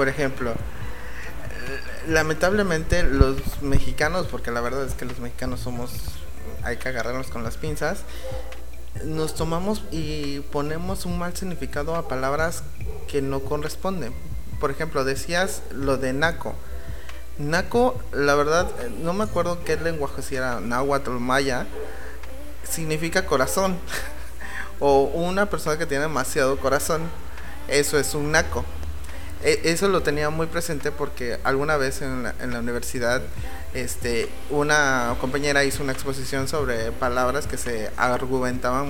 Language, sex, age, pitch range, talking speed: Spanish, male, 30-49, 125-155 Hz, 135 wpm